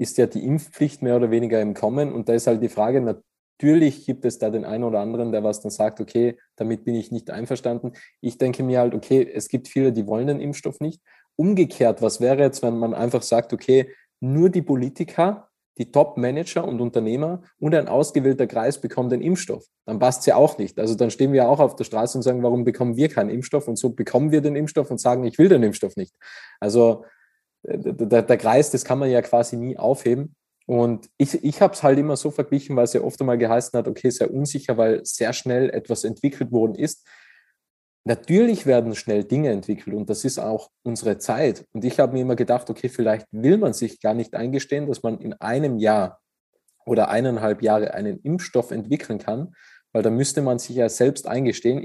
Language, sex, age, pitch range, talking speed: German, male, 20-39, 115-145 Hz, 215 wpm